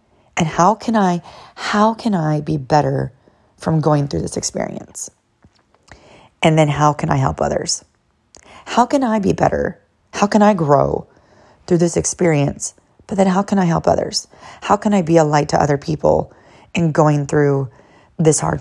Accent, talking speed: American, 175 wpm